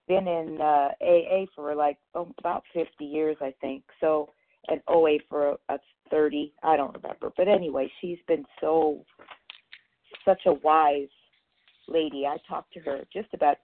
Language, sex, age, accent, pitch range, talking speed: English, female, 40-59, American, 145-170 Hz, 150 wpm